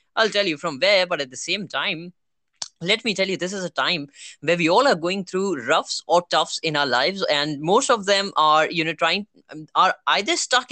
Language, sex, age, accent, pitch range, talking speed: Hindi, female, 20-39, native, 165-230 Hz, 230 wpm